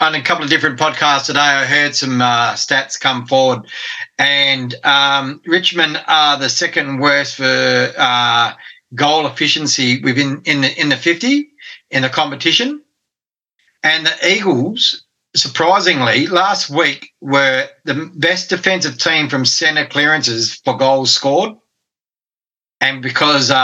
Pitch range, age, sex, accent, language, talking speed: 135-175 Hz, 40-59, male, Australian, English, 135 wpm